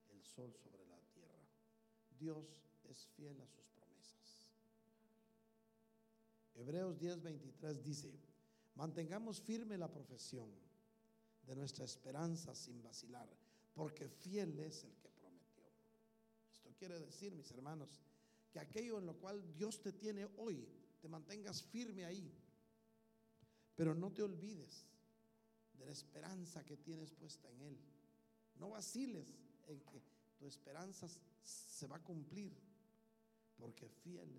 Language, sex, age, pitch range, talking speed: Spanish, male, 50-69, 150-220 Hz, 120 wpm